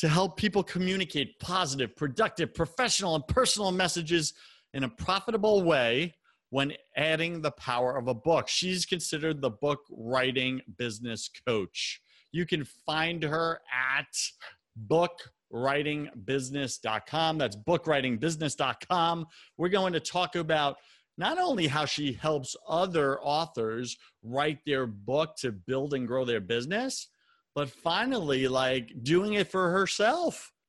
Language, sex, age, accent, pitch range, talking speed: English, male, 40-59, American, 130-175 Hz, 125 wpm